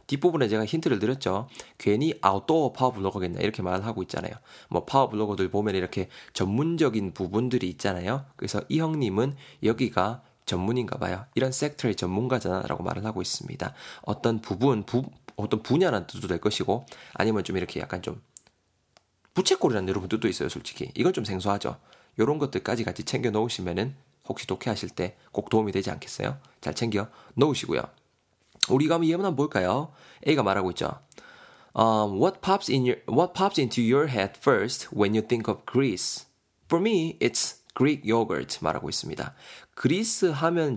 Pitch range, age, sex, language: 100-135 Hz, 20-39, male, Korean